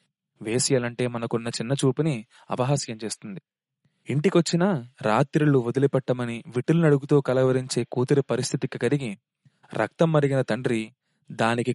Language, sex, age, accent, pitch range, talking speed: Telugu, male, 30-49, native, 125-150 Hz, 90 wpm